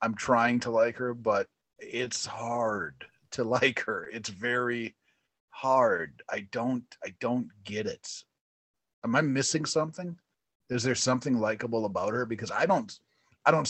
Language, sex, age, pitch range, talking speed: English, male, 30-49, 110-155 Hz, 155 wpm